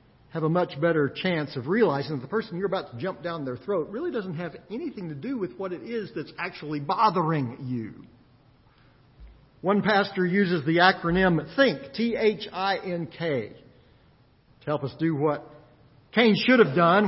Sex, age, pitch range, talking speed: male, 50-69, 160-235 Hz, 165 wpm